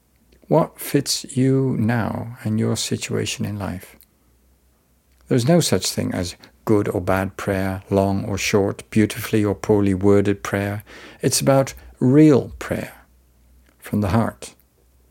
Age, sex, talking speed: 50-69, male, 130 wpm